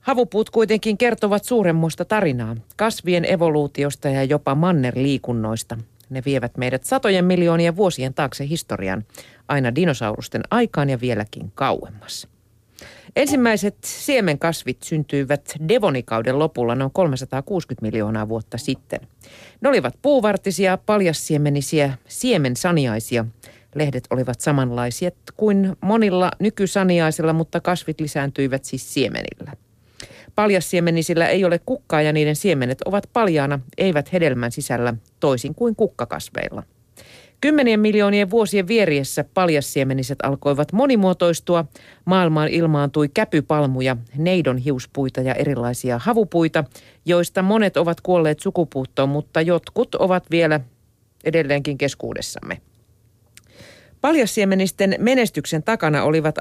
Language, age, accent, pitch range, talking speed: Finnish, 40-59, native, 130-190 Hz, 100 wpm